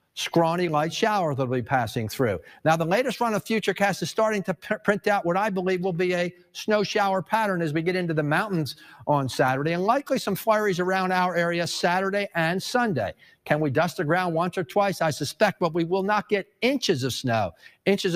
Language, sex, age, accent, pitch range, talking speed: English, male, 50-69, American, 160-200 Hz, 220 wpm